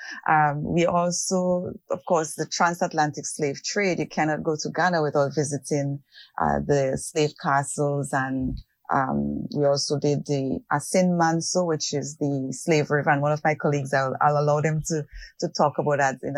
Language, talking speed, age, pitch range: English, 175 wpm, 30-49, 140-170 Hz